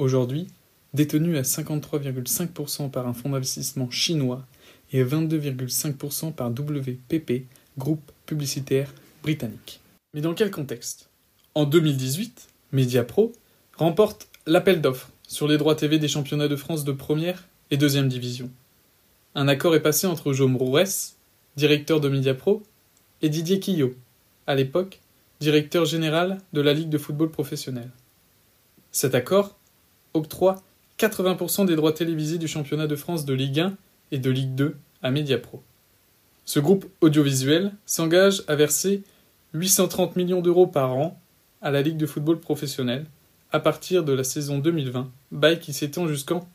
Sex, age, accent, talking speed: male, 20-39, French, 140 wpm